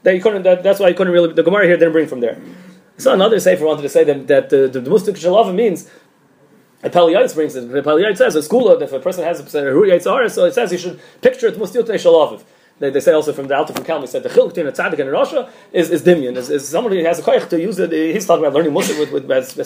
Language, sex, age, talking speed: English, male, 30-49, 280 wpm